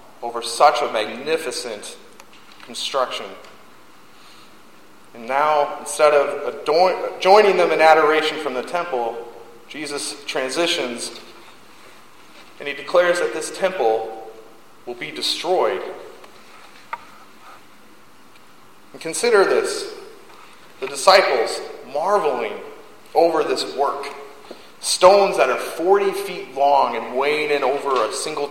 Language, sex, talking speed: English, male, 105 wpm